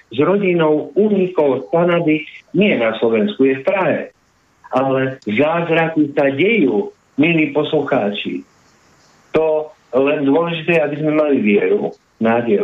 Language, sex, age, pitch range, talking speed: Slovak, male, 50-69, 125-165 Hz, 115 wpm